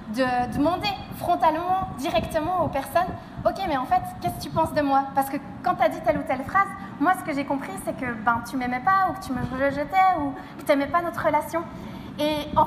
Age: 20-39